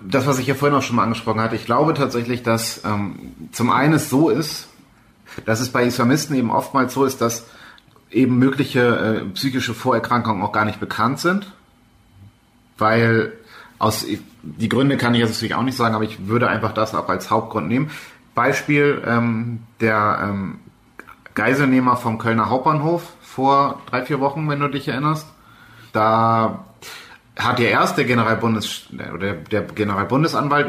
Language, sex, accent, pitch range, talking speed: German, male, German, 110-130 Hz, 160 wpm